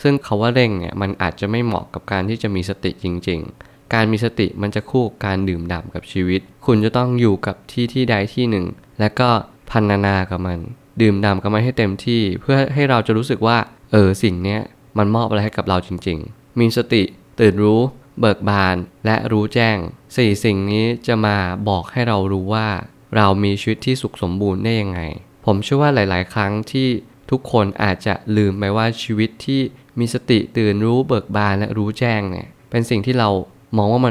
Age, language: 20-39, Thai